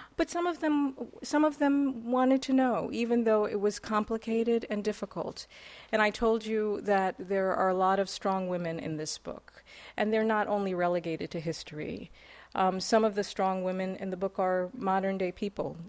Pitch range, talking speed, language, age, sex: 165-205 Hz, 195 wpm, English, 40-59, female